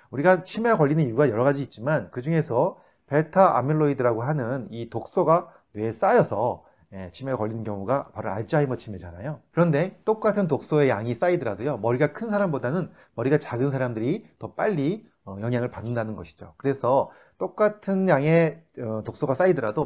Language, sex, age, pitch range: Korean, male, 30-49, 115-165 Hz